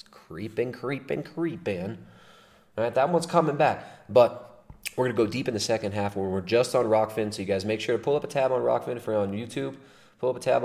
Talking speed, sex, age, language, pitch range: 240 wpm, male, 20-39, English, 95-125 Hz